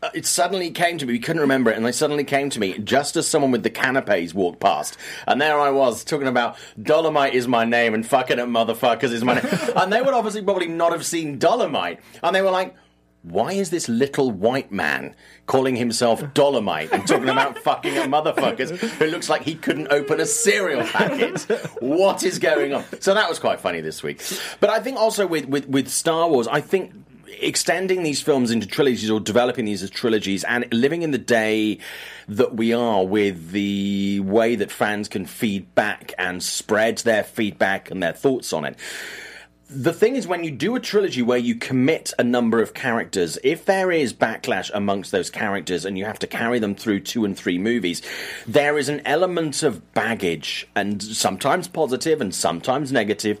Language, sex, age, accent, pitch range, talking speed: English, male, 30-49, British, 110-165 Hz, 200 wpm